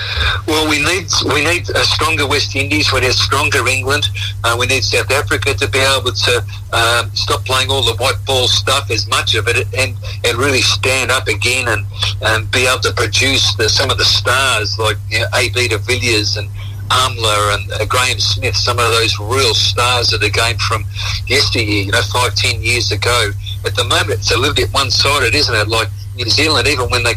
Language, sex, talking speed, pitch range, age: English, male, 210 wpm, 100-115 Hz, 50-69